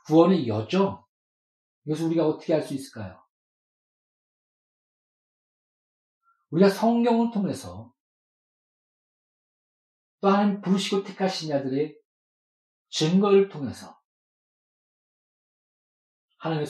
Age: 40-59